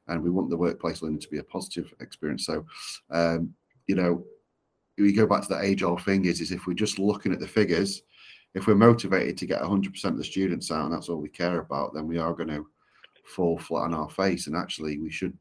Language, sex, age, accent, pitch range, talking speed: English, male, 30-49, British, 80-95 Hz, 245 wpm